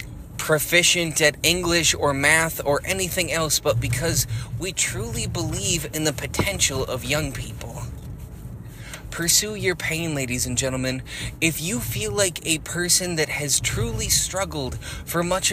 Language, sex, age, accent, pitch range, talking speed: English, male, 20-39, American, 130-175 Hz, 145 wpm